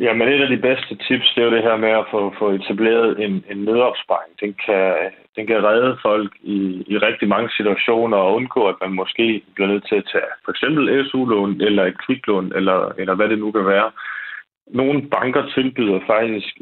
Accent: native